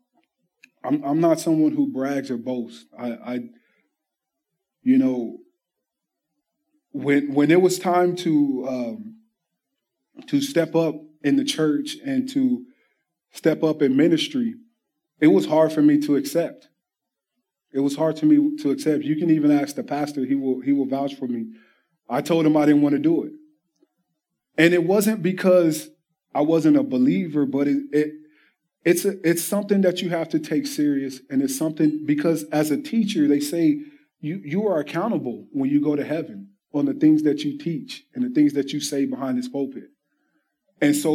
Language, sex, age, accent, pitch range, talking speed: English, male, 20-39, American, 150-235 Hz, 180 wpm